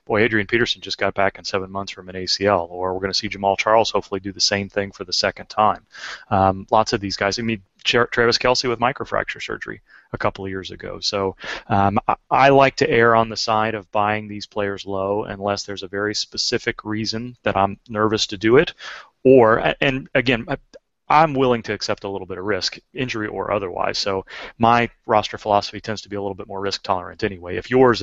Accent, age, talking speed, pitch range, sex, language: American, 30-49, 225 wpm, 100-115 Hz, male, English